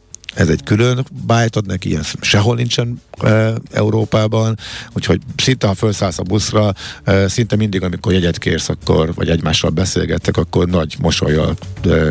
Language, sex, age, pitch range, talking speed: Hungarian, male, 50-69, 90-115 Hz, 150 wpm